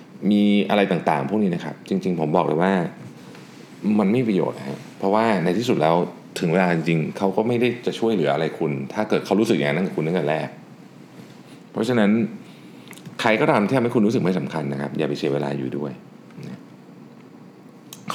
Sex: male